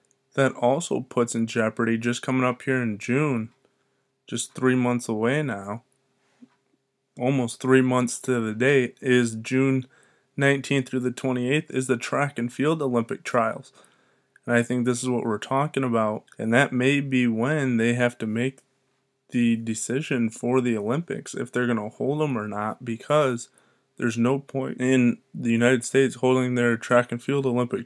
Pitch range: 115-130 Hz